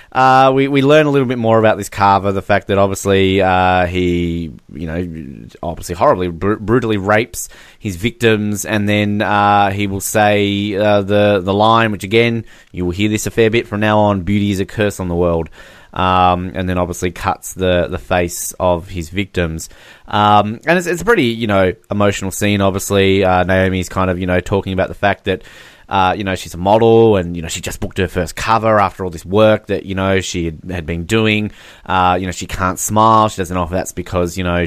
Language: English